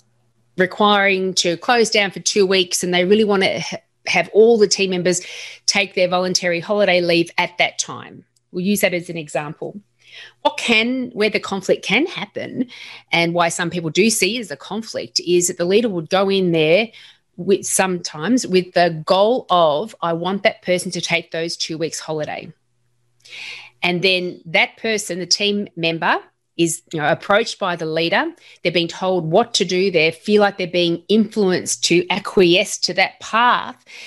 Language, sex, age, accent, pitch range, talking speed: English, female, 30-49, Australian, 165-200 Hz, 180 wpm